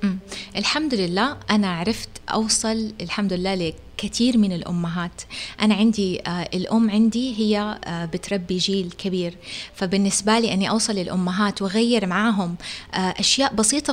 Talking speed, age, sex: 115 wpm, 20-39, female